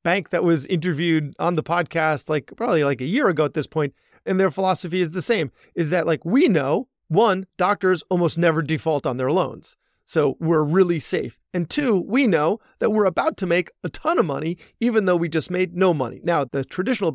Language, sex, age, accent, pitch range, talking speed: English, male, 30-49, American, 145-180 Hz, 215 wpm